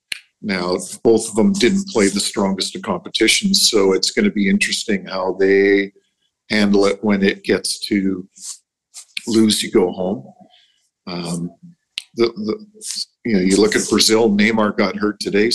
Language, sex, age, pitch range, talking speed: English, male, 50-69, 100-125 Hz, 150 wpm